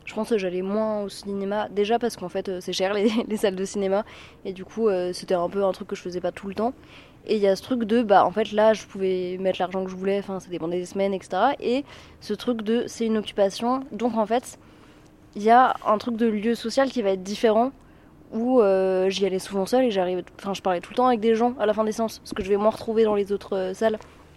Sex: female